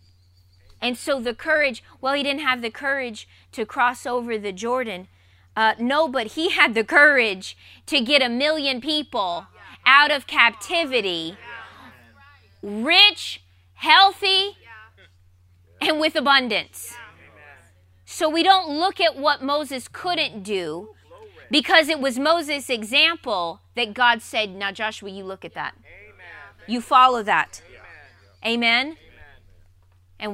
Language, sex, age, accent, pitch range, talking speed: English, female, 20-39, American, 195-305 Hz, 125 wpm